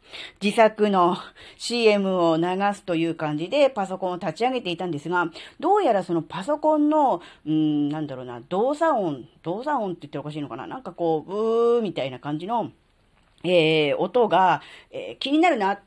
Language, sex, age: Japanese, female, 40-59